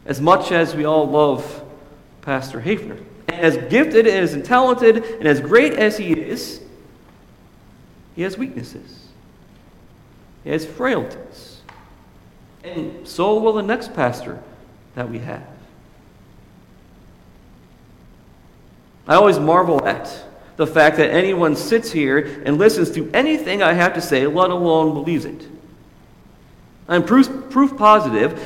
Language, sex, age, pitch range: English, male, 50-69, 145-210 Hz